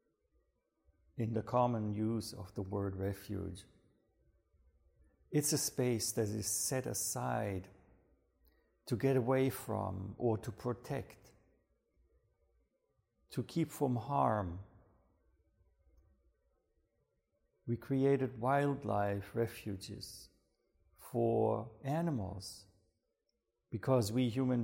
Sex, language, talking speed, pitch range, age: male, English, 85 wpm, 100-125 Hz, 50-69